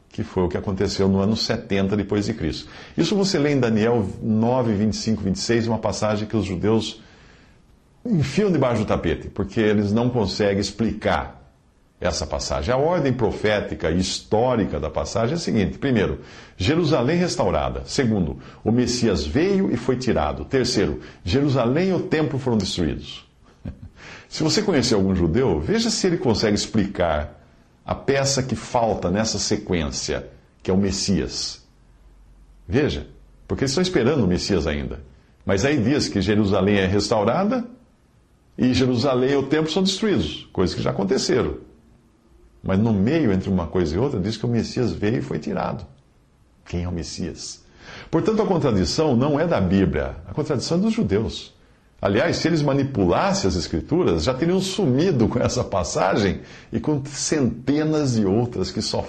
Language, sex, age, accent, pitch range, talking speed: Portuguese, male, 50-69, Brazilian, 90-125 Hz, 160 wpm